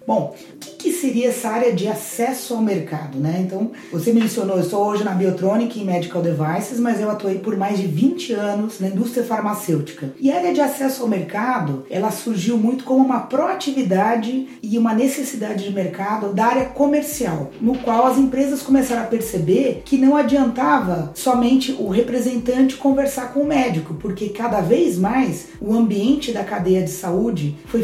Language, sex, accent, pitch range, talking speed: Portuguese, female, Brazilian, 185-250 Hz, 180 wpm